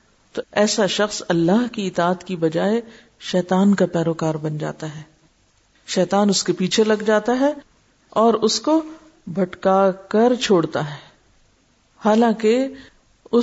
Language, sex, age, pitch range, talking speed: Urdu, female, 50-69, 185-245 Hz, 130 wpm